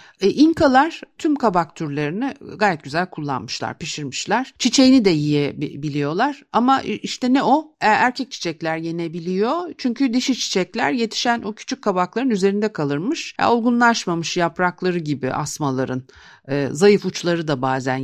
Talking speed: 130 wpm